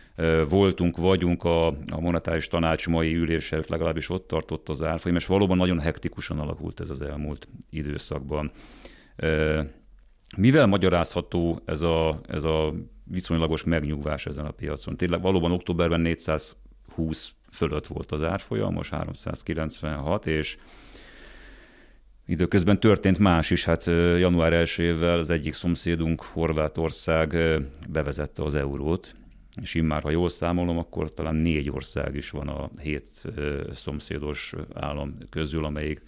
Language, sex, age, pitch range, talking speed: Hungarian, male, 40-59, 75-85 Hz, 125 wpm